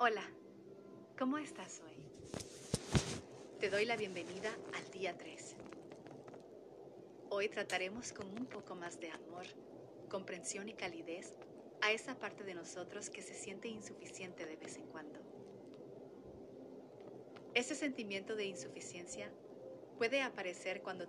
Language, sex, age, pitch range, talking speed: Spanish, female, 30-49, 190-235 Hz, 120 wpm